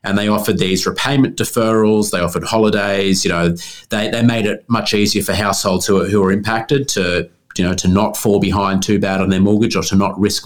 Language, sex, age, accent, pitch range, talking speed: English, male, 30-49, Australian, 95-110 Hz, 225 wpm